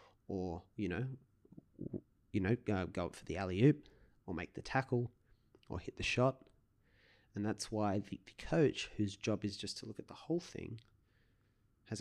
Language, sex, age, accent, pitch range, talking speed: English, male, 30-49, Australian, 100-115 Hz, 185 wpm